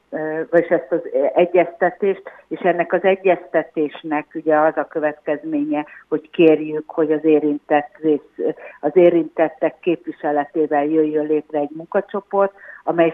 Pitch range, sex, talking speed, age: 150-180 Hz, female, 115 wpm, 60-79